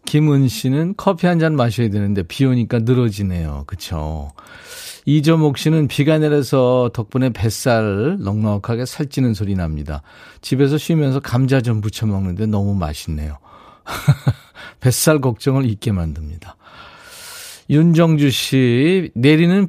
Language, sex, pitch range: Korean, male, 95-145 Hz